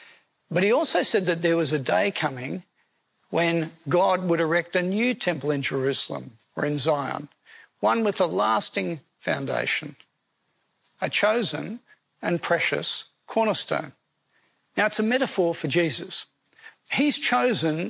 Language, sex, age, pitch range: English, male, 50-69, 160-210 Hz